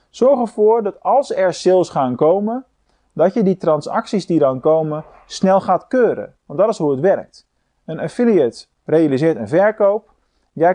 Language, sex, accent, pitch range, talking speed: Dutch, male, Dutch, 140-190 Hz, 165 wpm